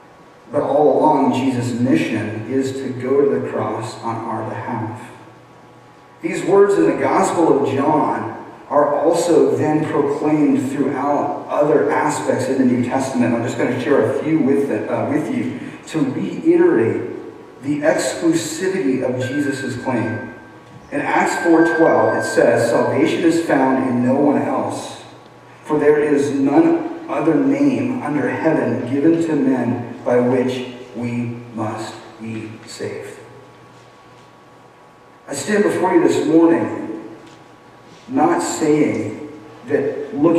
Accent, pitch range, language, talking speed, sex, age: American, 125-165 Hz, English, 130 wpm, male, 40-59